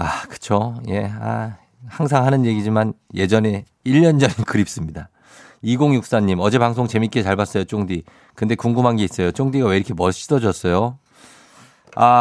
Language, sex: Korean, male